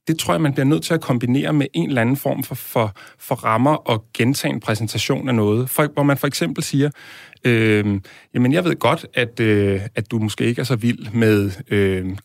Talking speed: 215 wpm